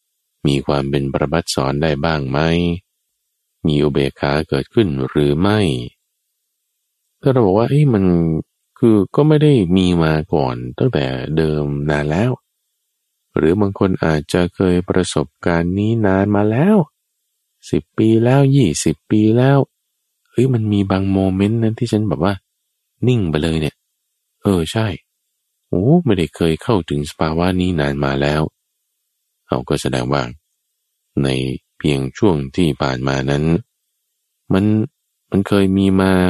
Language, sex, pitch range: Thai, male, 75-115 Hz